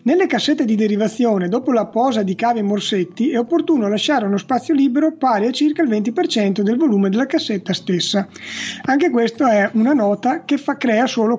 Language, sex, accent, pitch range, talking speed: Italian, male, native, 200-265 Hz, 185 wpm